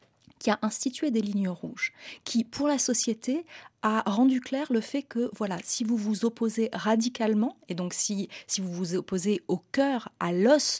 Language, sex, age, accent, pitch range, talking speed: French, female, 30-49, French, 190-245 Hz, 185 wpm